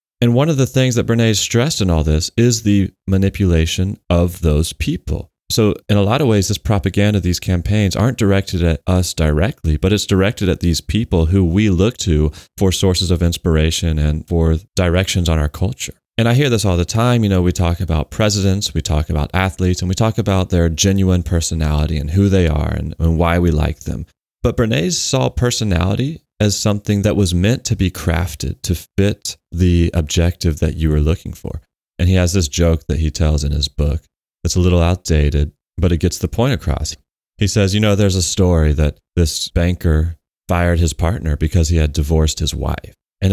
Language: English